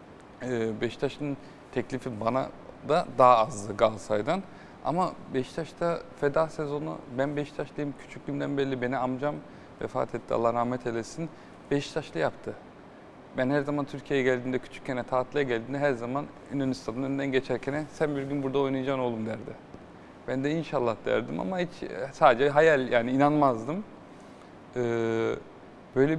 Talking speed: 125 wpm